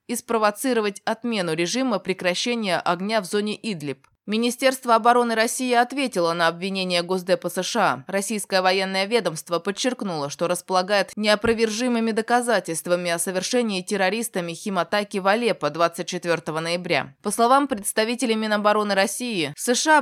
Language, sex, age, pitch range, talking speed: Russian, female, 20-39, 175-230 Hz, 115 wpm